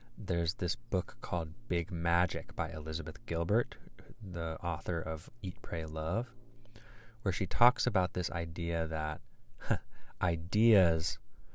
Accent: American